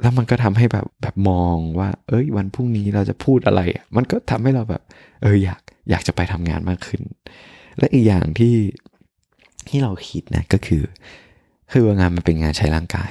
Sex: male